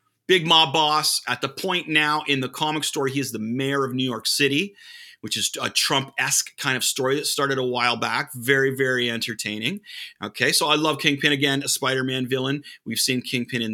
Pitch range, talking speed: 120-155 Hz, 210 wpm